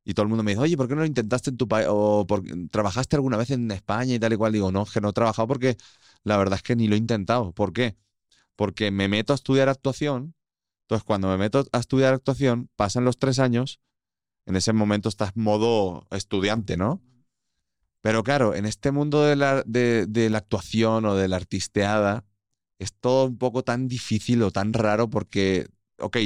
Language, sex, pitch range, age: Spanish, male, 95-120 Hz, 30-49